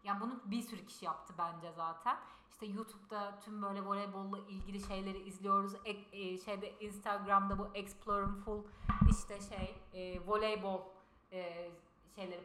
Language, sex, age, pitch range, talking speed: Turkish, female, 30-49, 190-275 Hz, 135 wpm